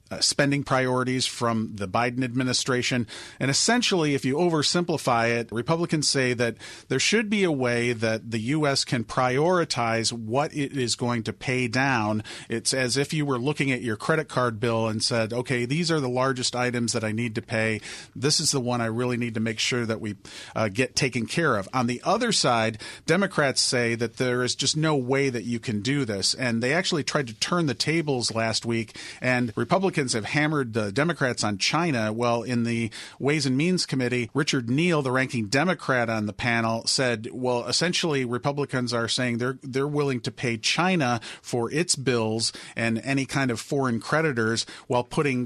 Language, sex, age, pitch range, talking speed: English, male, 40-59, 115-140 Hz, 195 wpm